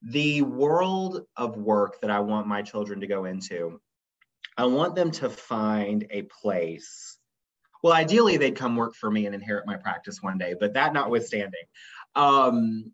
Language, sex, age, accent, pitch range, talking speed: English, male, 30-49, American, 105-140 Hz, 165 wpm